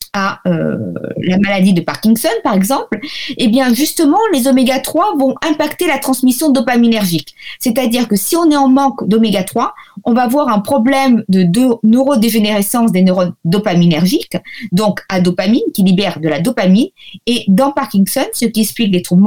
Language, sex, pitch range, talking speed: French, female, 200-265 Hz, 160 wpm